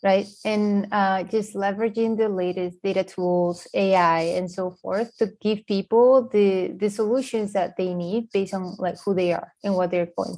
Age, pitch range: 20-39, 185-220 Hz